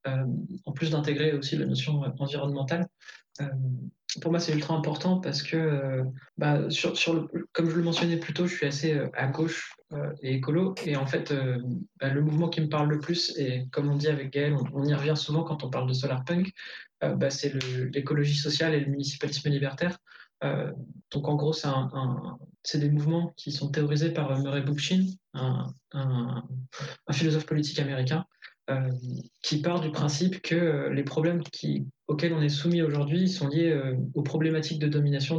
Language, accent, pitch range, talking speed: French, French, 145-165 Hz, 205 wpm